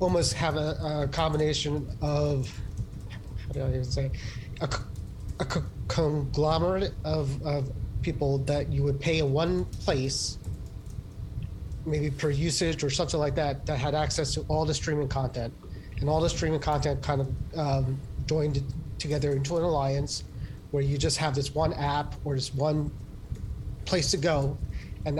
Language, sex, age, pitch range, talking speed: English, male, 30-49, 120-150 Hz, 155 wpm